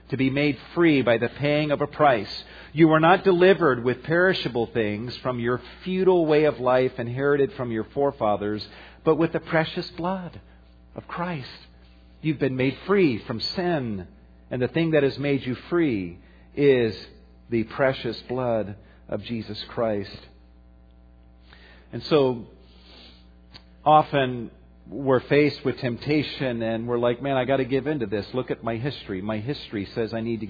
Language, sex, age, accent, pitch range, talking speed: English, male, 40-59, American, 110-145 Hz, 160 wpm